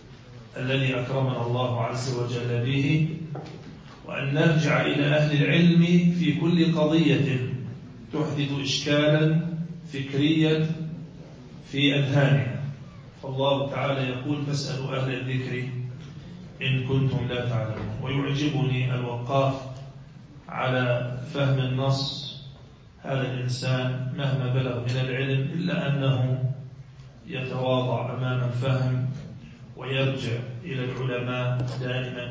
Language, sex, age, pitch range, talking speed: Arabic, male, 40-59, 130-145 Hz, 90 wpm